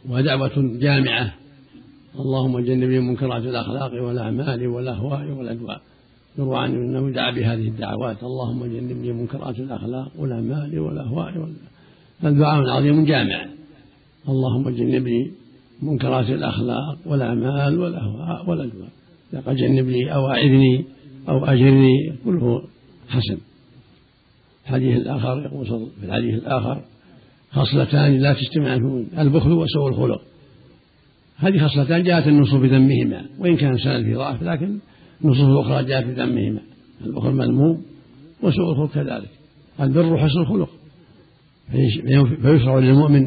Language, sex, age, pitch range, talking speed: Arabic, male, 70-89, 125-145 Hz, 105 wpm